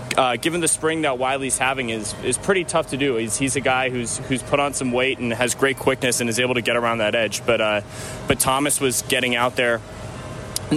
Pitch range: 115-135 Hz